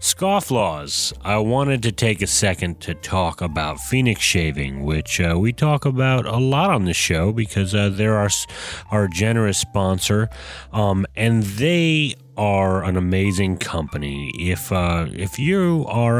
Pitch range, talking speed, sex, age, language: 85-110 Hz, 150 wpm, male, 30-49, English